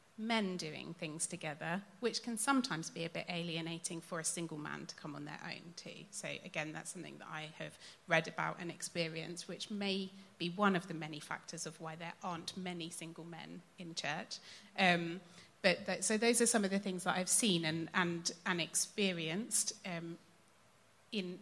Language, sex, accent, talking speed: English, female, British, 190 wpm